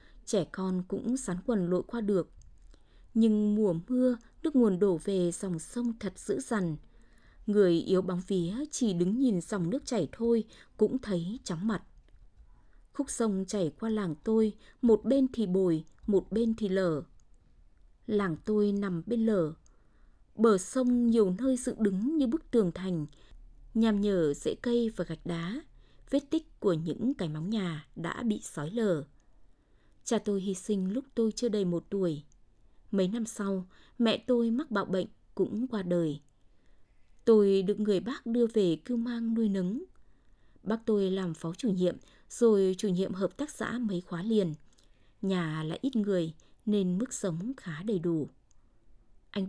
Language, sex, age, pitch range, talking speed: Vietnamese, female, 20-39, 175-230 Hz, 170 wpm